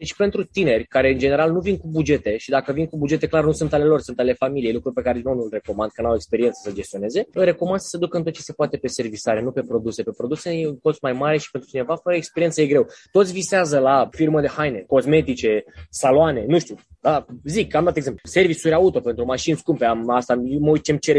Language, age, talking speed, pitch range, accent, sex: Romanian, 20-39, 255 wpm, 130-170 Hz, native, male